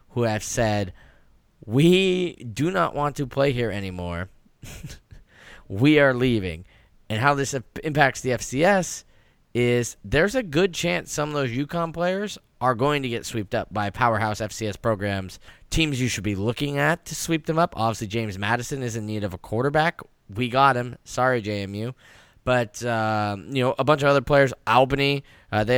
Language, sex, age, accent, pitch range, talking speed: English, male, 10-29, American, 110-140 Hz, 175 wpm